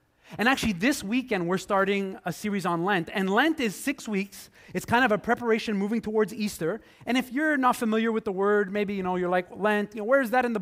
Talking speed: 250 wpm